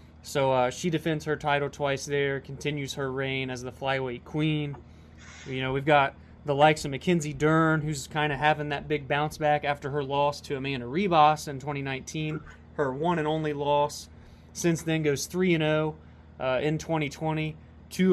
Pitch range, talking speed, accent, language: 135-150 Hz, 180 wpm, American, English